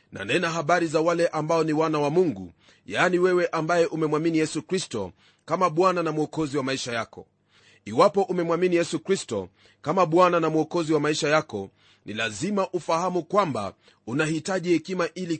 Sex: male